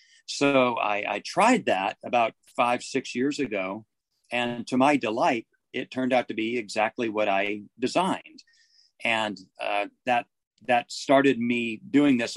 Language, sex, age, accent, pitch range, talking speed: German, male, 40-59, American, 115-145 Hz, 150 wpm